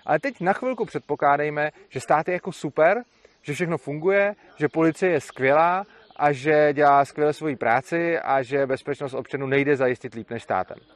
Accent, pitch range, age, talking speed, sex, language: native, 150-205 Hz, 30-49, 175 wpm, male, Czech